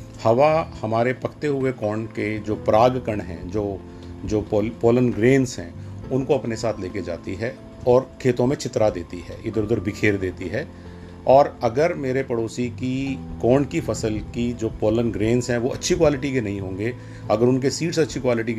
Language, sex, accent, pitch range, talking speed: Hindi, male, native, 105-130 Hz, 185 wpm